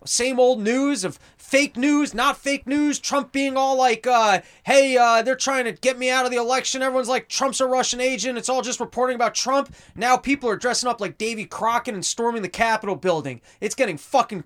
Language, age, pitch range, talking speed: English, 20-39, 170-225 Hz, 220 wpm